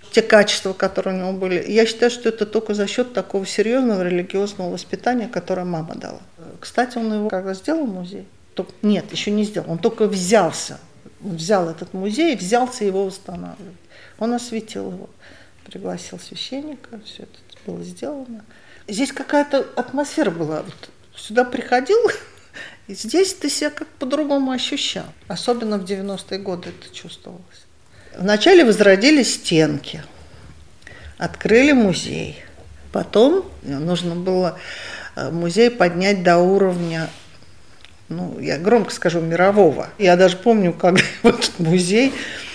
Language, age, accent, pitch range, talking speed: Russian, 50-69, native, 175-235 Hz, 130 wpm